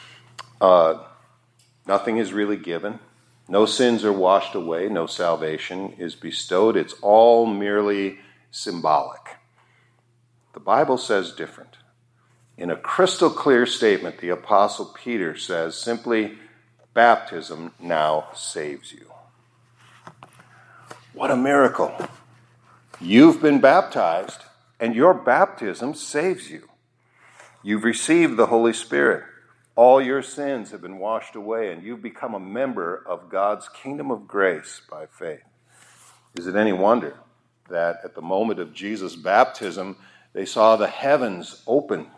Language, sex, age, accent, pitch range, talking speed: English, male, 50-69, American, 95-120 Hz, 125 wpm